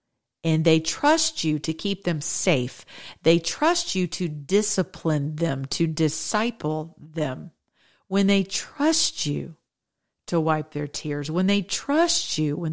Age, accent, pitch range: 40-59, American, 145-180 Hz